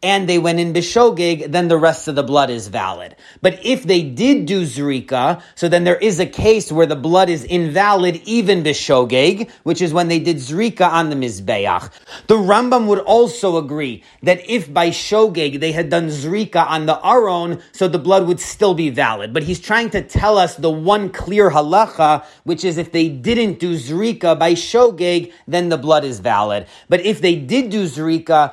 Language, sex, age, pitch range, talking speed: English, male, 30-49, 155-195 Hz, 200 wpm